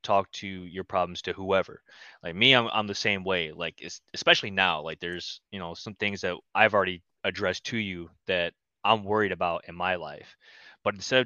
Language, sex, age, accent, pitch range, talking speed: English, male, 20-39, American, 95-115 Hz, 210 wpm